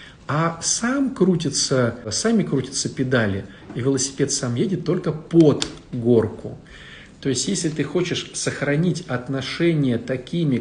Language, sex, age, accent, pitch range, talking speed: Russian, male, 50-69, native, 120-165 Hz, 105 wpm